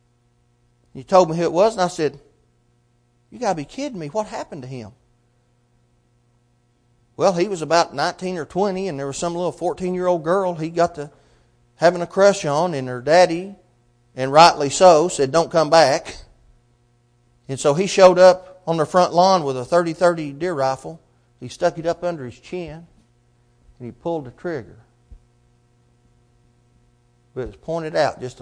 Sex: male